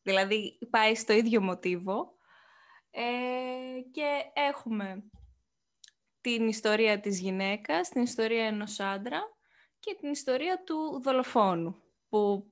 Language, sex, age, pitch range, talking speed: Greek, female, 20-39, 205-270 Hz, 100 wpm